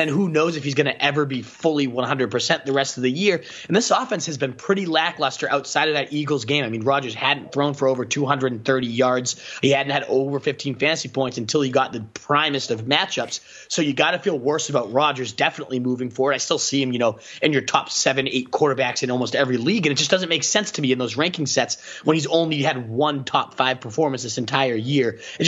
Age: 30-49